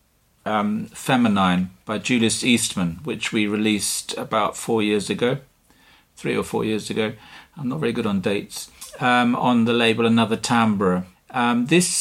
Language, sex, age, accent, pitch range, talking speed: English, male, 50-69, British, 105-140 Hz, 155 wpm